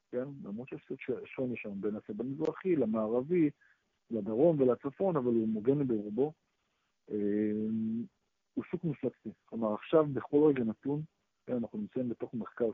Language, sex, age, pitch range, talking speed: Hebrew, male, 50-69, 110-135 Hz, 130 wpm